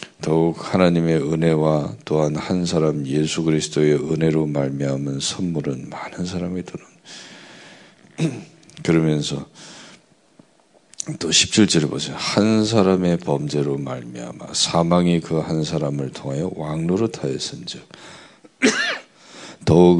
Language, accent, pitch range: Korean, native, 75-90 Hz